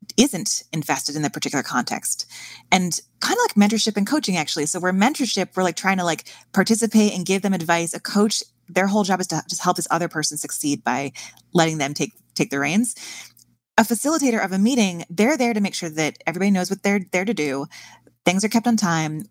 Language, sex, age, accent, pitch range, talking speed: English, female, 20-39, American, 155-210 Hz, 220 wpm